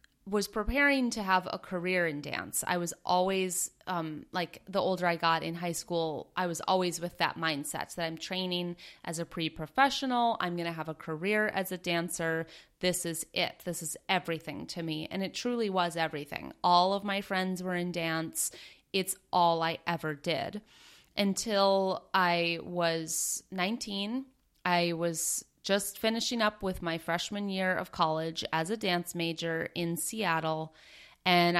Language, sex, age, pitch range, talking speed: English, female, 30-49, 165-200 Hz, 165 wpm